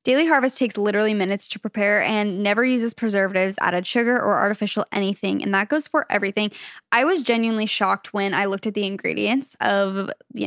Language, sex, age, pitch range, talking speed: English, female, 10-29, 195-245 Hz, 190 wpm